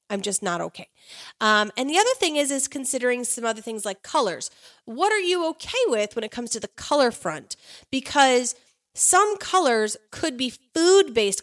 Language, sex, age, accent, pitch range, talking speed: English, female, 30-49, American, 200-280 Hz, 185 wpm